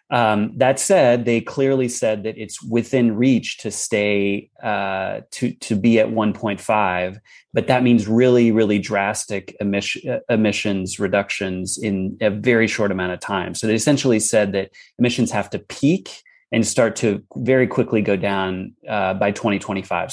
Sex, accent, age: male, American, 30-49